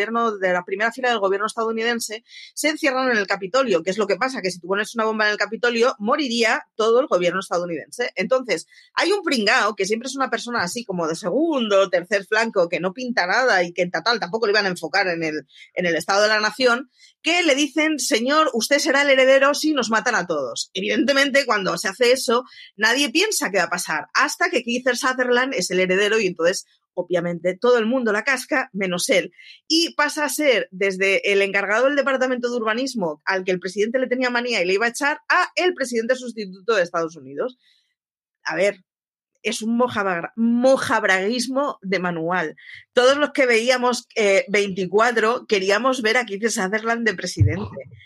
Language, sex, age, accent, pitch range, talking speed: Spanish, female, 30-49, Spanish, 195-270 Hz, 200 wpm